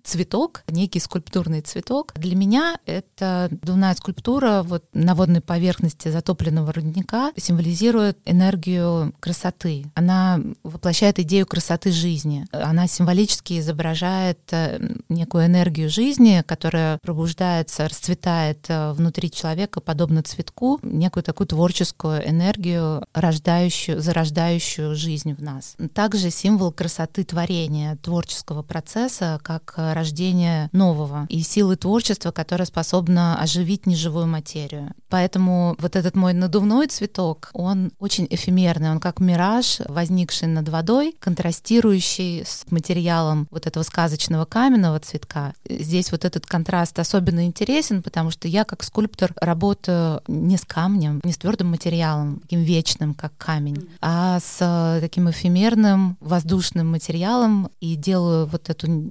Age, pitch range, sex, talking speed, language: 20-39, 160-185 Hz, female, 120 wpm, Russian